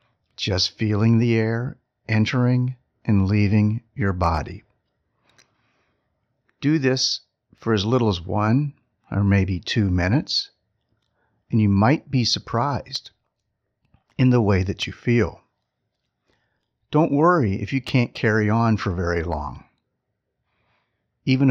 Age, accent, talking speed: 50-69, American, 115 wpm